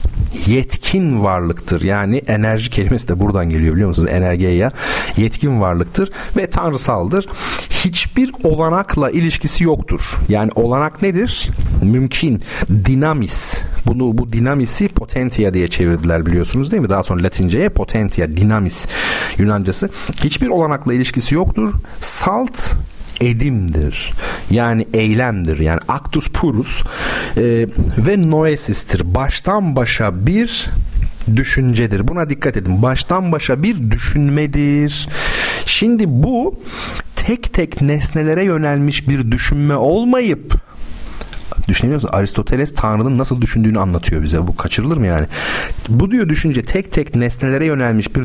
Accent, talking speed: native, 115 wpm